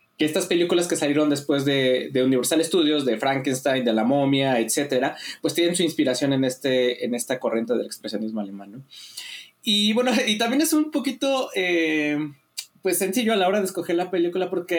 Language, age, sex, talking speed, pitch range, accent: Spanish, 20-39, male, 190 wpm, 135-200 Hz, Mexican